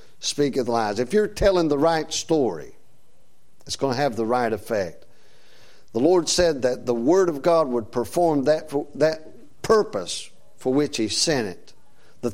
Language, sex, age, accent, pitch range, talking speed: English, male, 50-69, American, 120-155 Hz, 165 wpm